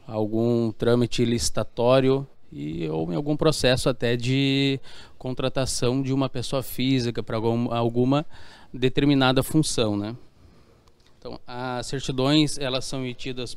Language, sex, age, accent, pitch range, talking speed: Portuguese, male, 20-39, Brazilian, 115-135 Hz, 120 wpm